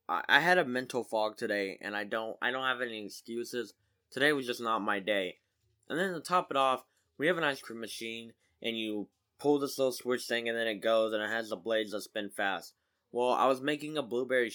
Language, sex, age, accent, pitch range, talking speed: English, male, 10-29, American, 110-140 Hz, 235 wpm